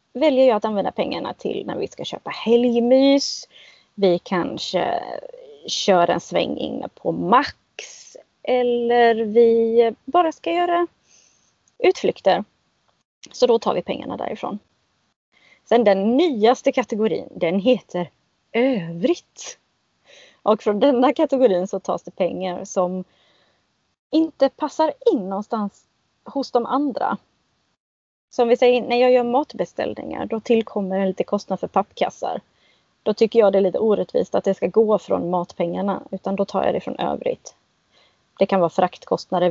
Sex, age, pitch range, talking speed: female, 20-39, 190-255 Hz, 140 wpm